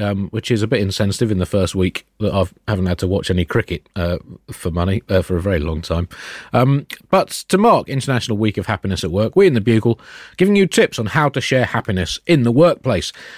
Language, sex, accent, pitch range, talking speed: English, male, British, 95-130 Hz, 235 wpm